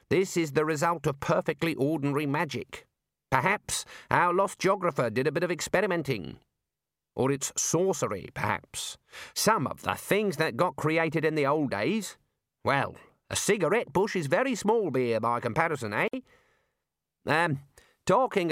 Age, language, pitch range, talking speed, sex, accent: 50-69, English, 110-165 Hz, 145 wpm, male, British